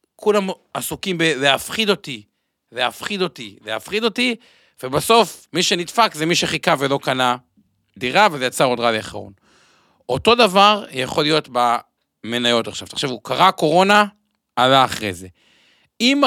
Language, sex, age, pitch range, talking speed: Hebrew, male, 50-69, 120-175 Hz, 130 wpm